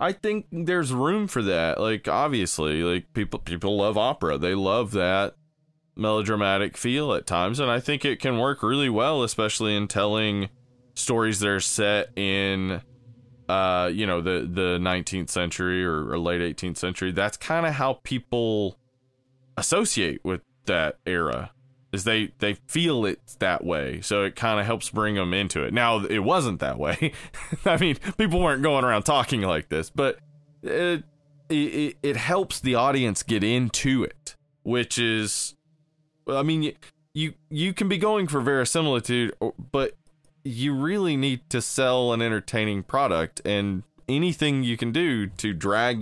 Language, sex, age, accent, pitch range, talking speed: English, male, 20-39, American, 100-145 Hz, 165 wpm